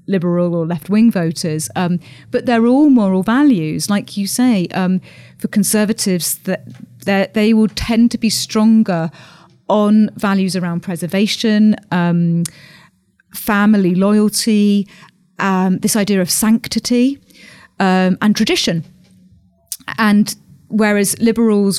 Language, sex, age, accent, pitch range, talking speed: English, female, 30-49, British, 170-210 Hz, 115 wpm